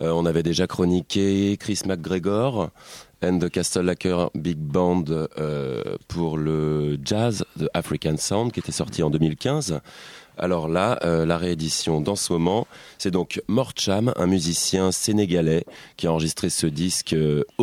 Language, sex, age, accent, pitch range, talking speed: French, male, 30-49, French, 80-100 Hz, 155 wpm